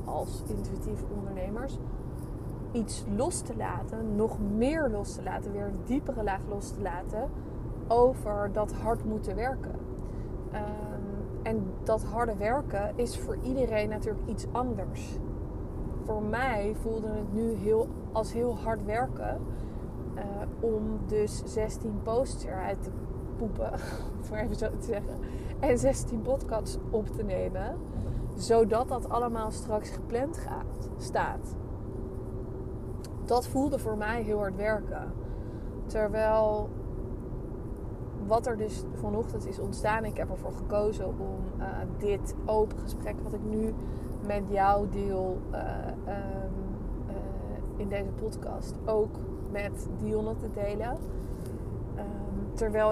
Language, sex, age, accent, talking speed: Dutch, female, 20-39, Dutch, 125 wpm